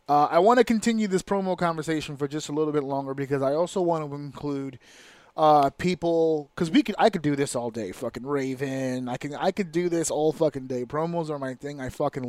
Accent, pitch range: American, 135-170 Hz